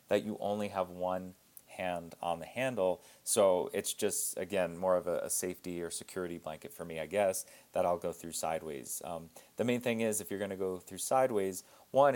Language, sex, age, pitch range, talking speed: English, male, 30-49, 90-105 Hz, 205 wpm